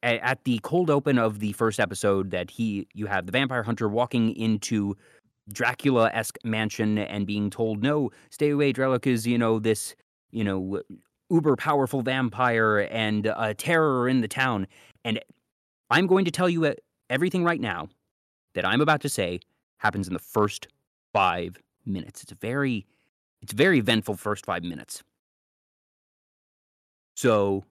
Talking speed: 160 wpm